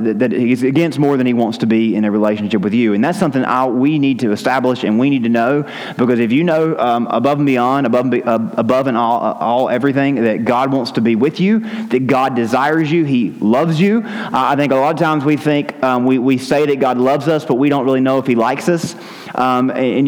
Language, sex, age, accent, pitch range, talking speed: English, male, 30-49, American, 125-150 Hz, 245 wpm